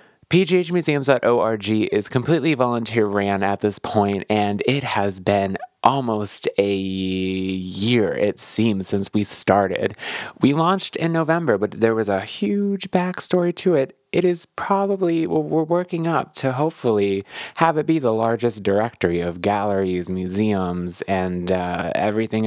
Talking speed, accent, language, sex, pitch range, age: 135 wpm, American, English, male, 100-145 Hz, 20-39